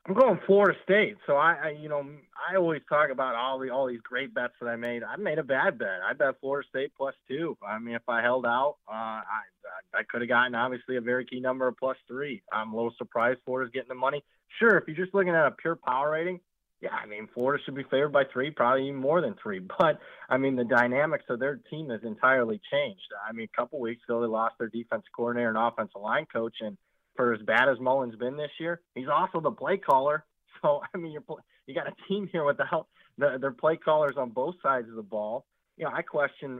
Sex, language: male, English